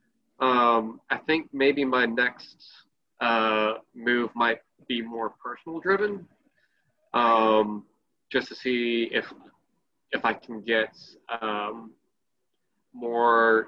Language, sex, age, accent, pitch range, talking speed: English, male, 20-39, American, 110-125 Hz, 105 wpm